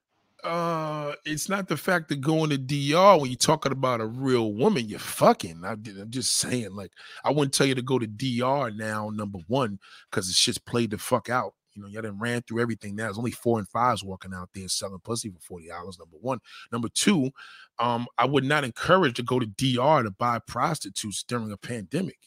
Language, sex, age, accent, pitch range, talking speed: English, male, 20-39, American, 110-145 Hz, 220 wpm